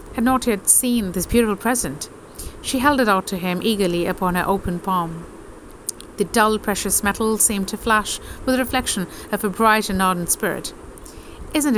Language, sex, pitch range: English, female, 185-240 Hz